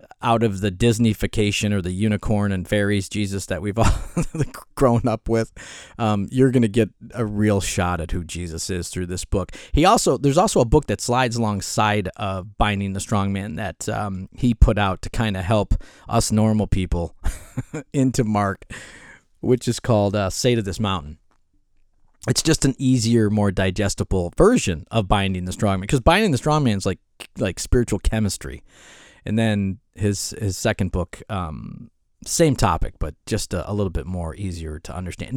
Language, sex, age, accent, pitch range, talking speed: English, male, 30-49, American, 95-125 Hz, 180 wpm